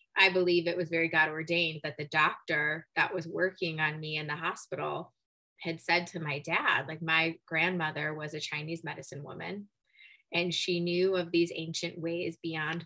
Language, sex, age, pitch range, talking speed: English, female, 20-39, 160-180 Hz, 180 wpm